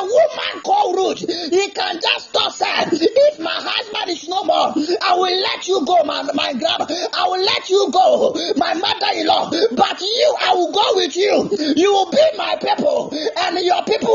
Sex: male